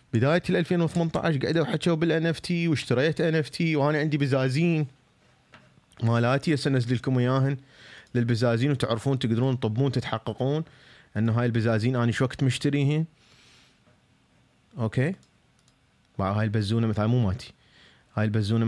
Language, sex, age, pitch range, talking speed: Arabic, male, 30-49, 105-135 Hz, 125 wpm